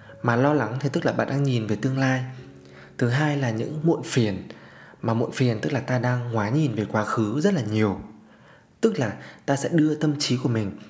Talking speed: 230 wpm